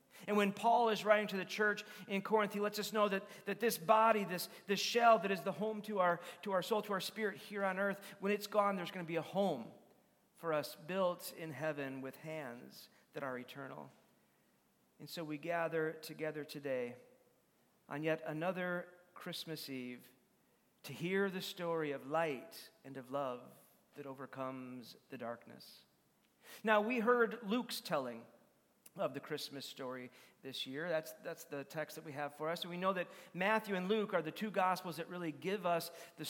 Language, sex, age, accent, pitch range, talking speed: English, male, 40-59, American, 150-205 Hz, 190 wpm